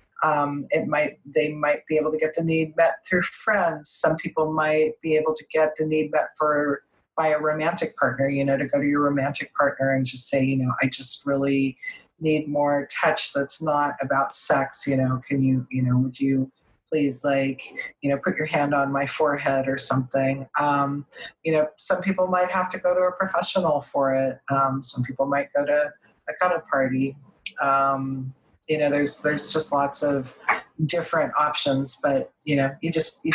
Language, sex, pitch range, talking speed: English, female, 135-155 Hz, 200 wpm